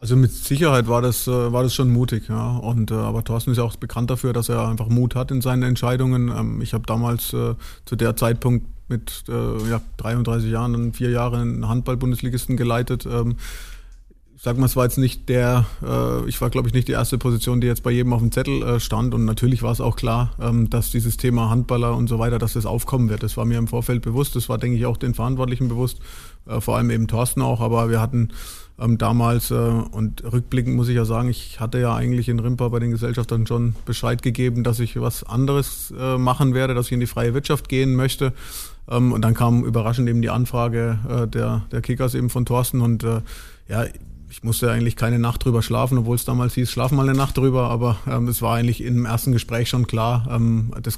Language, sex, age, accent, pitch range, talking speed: German, male, 20-39, German, 115-125 Hz, 225 wpm